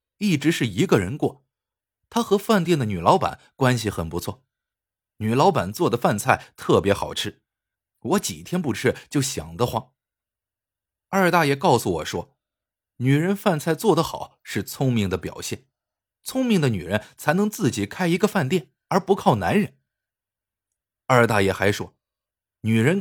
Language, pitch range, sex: Chinese, 105-175 Hz, male